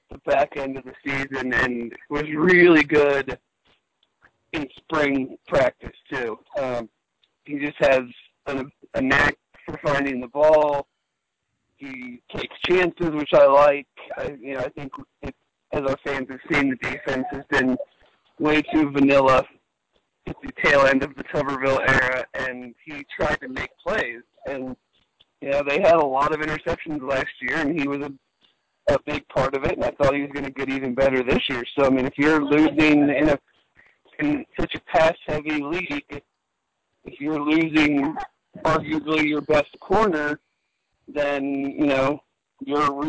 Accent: American